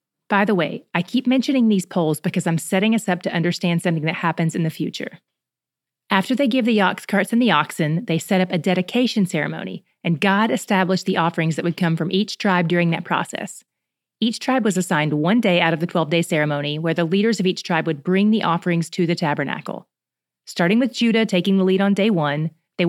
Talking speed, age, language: 220 wpm, 30-49, English